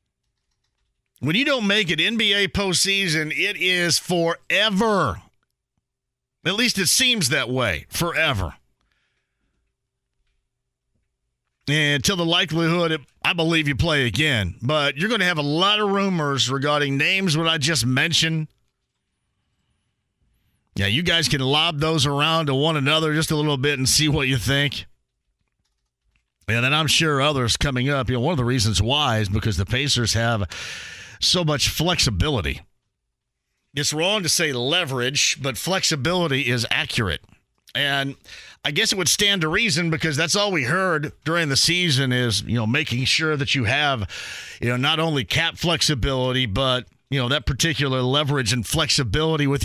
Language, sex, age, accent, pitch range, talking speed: English, male, 40-59, American, 130-170 Hz, 155 wpm